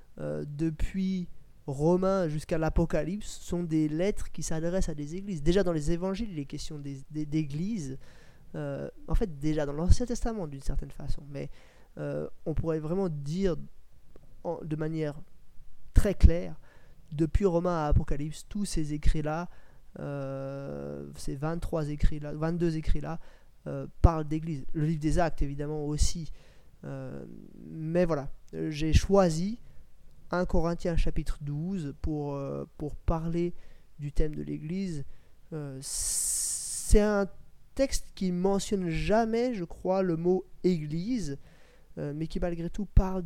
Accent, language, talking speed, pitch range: French, French, 140 wpm, 150-180 Hz